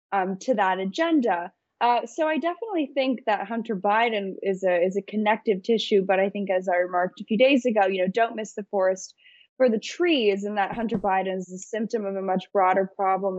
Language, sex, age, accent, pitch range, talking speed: English, female, 10-29, American, 190-225 Hz, 220 wpm